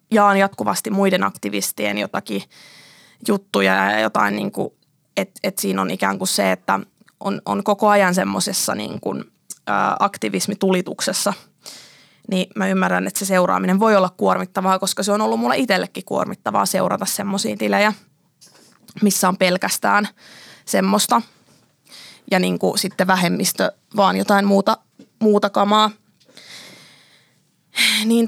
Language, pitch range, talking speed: Finnish, 185-215 Hz, 125 wpm